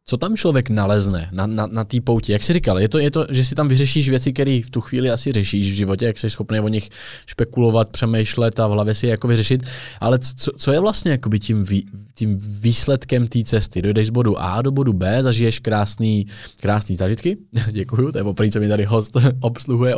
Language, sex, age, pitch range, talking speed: Czech, male, 20-39, 105-130 Hz, 220 wpm